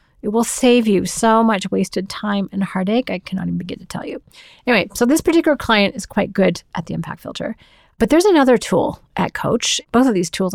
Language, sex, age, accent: English, female, 40-59, American